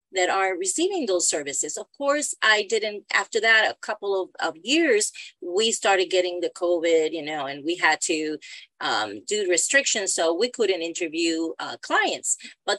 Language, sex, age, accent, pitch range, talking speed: English, female, 40-59, American, 165-225 Hz, 175 wpm